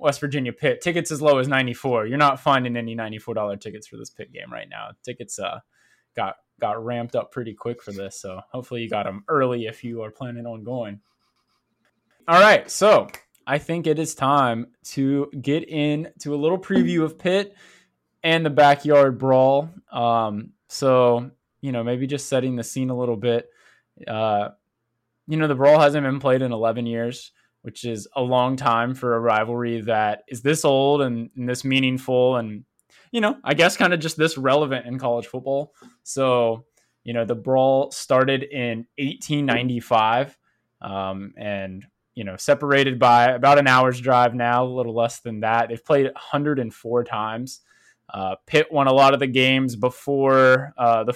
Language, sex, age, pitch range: English, male, 20-39, 115-140 Hz